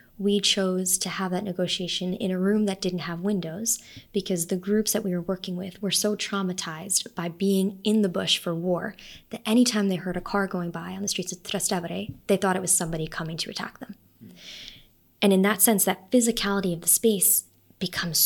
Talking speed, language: 205 wpm, English